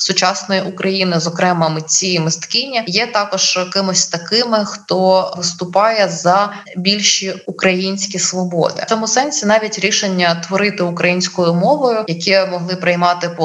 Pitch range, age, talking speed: 170-200 Hz, 20-39, 125 wpm